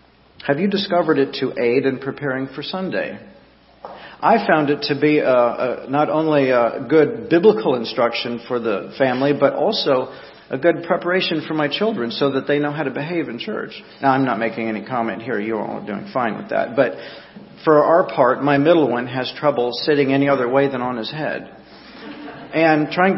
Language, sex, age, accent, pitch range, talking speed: English, male, 40-59, American, 130-170 Hz, 190 wpm